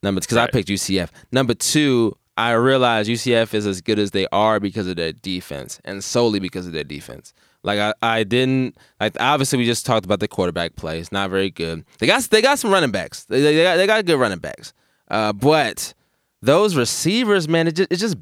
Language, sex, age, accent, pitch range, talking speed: English, male, 20-39, American, 110-155 Hz, 215 wpm